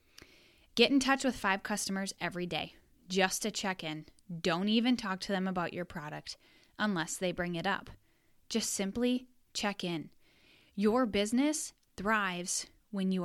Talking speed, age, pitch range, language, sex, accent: 155 wpm, 10-29, 175-220 Hz, English, female, American